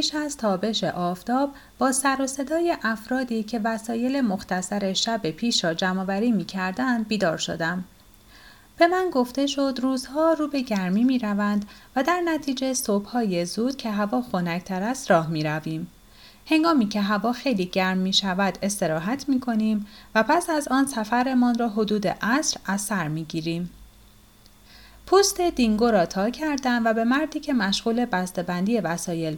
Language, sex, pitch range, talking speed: Persian, female, 185-260 Hz, 155 wpm